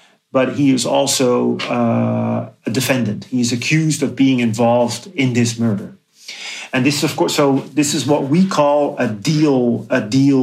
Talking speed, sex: 180 wpm, male